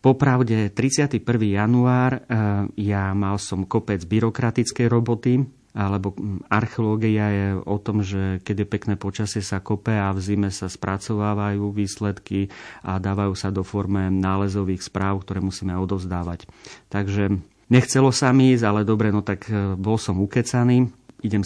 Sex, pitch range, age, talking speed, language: male, 100-110 Hz, 30-49, 135 wpm, Slovak